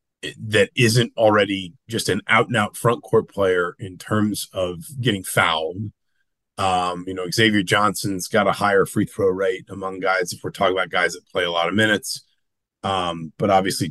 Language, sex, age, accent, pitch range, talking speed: English, male, 30-49, American, 95-120 Hz, 185 wpm